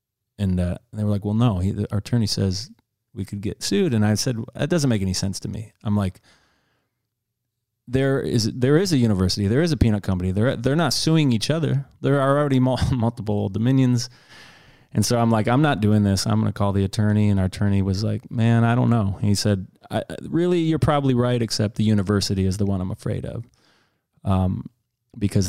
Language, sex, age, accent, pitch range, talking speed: English, male, 30-49, American, 100-120 Hz, 205 wpm